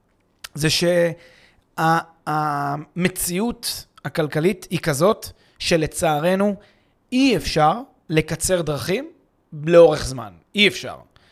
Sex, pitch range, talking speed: male, 155-200 Hz, 80 wpm